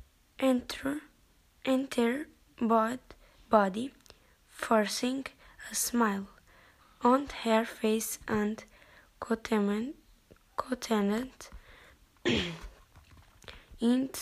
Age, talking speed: 20-39, 55 wpm